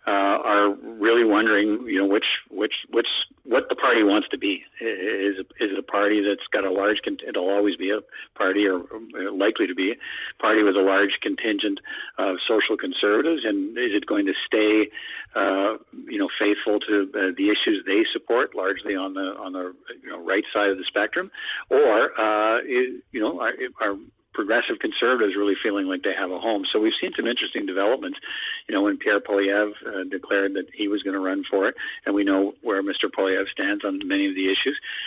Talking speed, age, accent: 210 wpm, 50-69, American